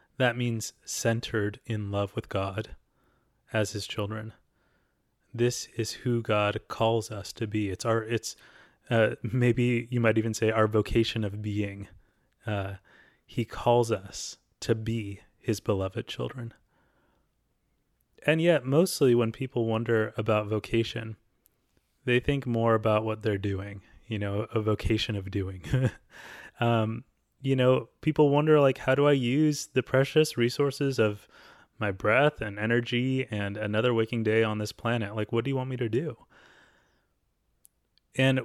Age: 20-39